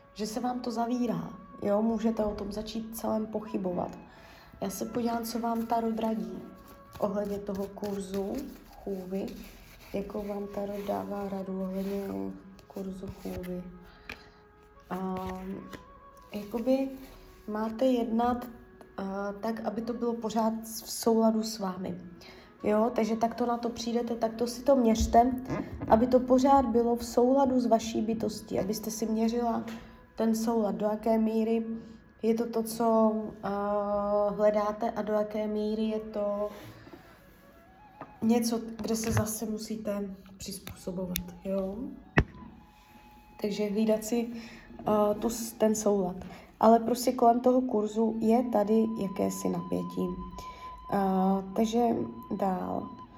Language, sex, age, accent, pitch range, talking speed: Czech, female, 20-39, native, 200-235 Hz, 120 wpm